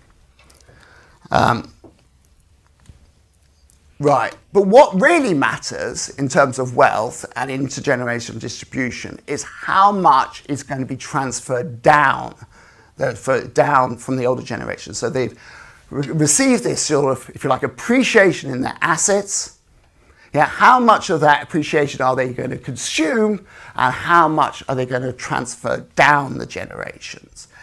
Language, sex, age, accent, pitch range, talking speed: English, male, 50-69, British, 120-155 Hz, 140 wpm